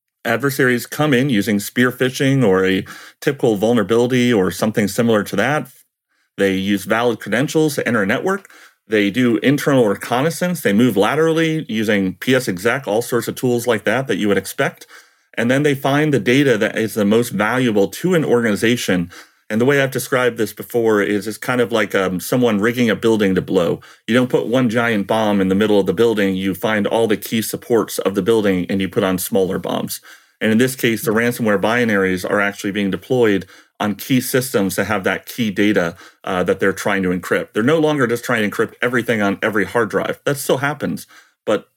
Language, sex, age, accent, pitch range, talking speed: English, male, 30-49, American, 100-125 Hz, 205 wpm